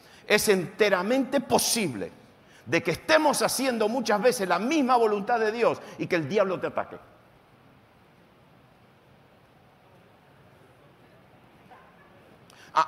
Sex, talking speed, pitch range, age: male, 100 wpm, 175-235 Hz, 50-69